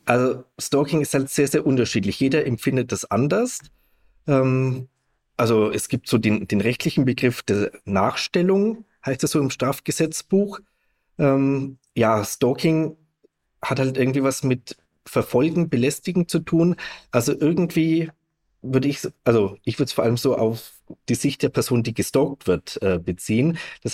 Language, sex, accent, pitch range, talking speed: German, male, German, 120-155 Hz, 145 wpm